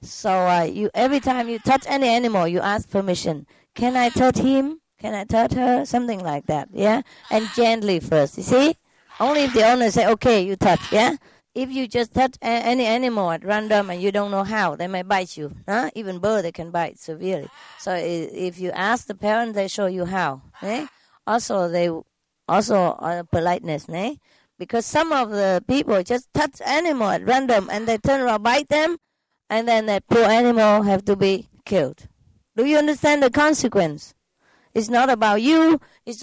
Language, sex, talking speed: English, female, 195 wpm